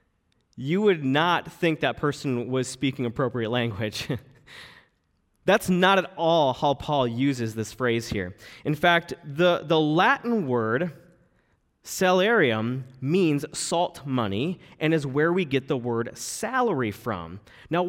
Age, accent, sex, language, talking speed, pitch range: 20-39, American, male, English, 135 wpm, 120-175 Hz